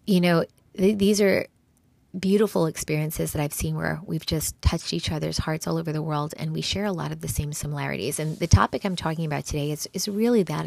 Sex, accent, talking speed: female, American, 230 wpm